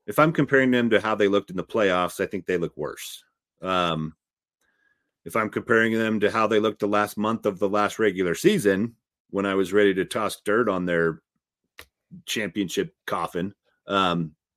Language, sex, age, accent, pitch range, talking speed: English, male, 40-59, American, 90-115 Hz, 185 wpm